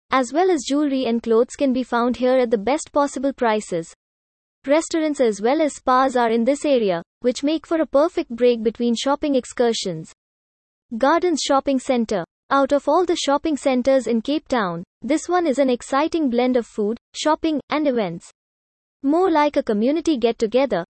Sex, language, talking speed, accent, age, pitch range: female, English, 175 wpm, Indian, 20-39, 235-290 Hz